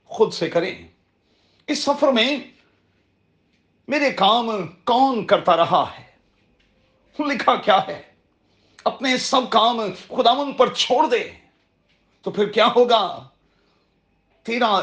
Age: 40-59